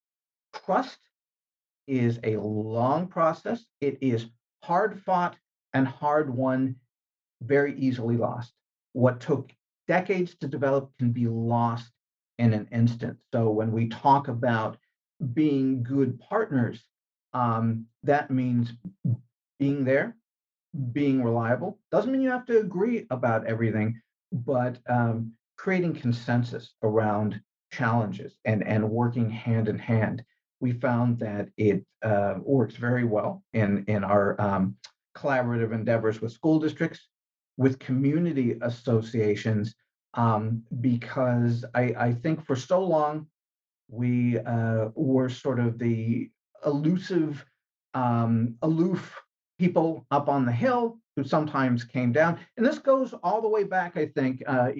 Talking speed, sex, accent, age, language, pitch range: 130 wpm, male, American, 50-69, English, 115-150 Hz